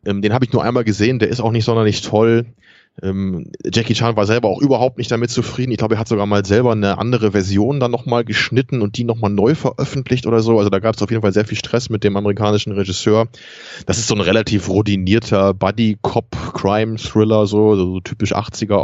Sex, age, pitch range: male, 20-39, 100-120 Hz